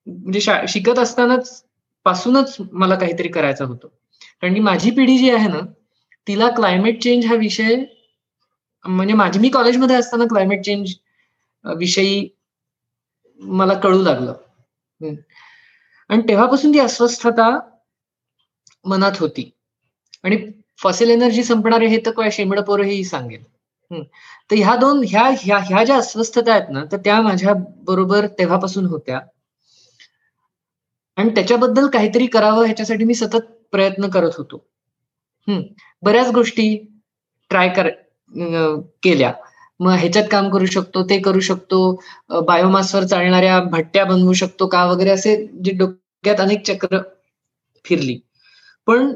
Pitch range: 180-225 Hz